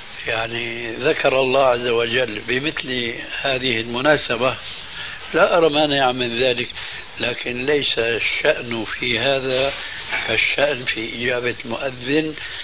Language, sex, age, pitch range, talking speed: Arabic, male, 60-79, 110-135 Hz, 110 wpm